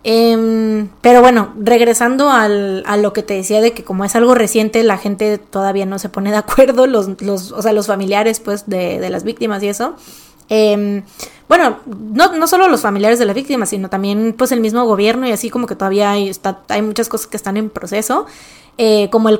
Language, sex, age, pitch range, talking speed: Spanish, female, 20-39, 200-235 Hz, 215 wpm